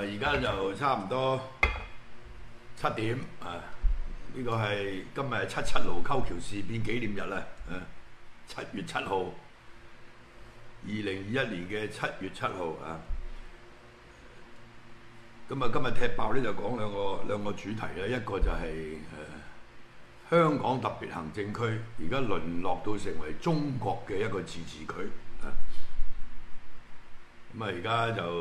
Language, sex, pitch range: Chinese, male, 95-120 Hz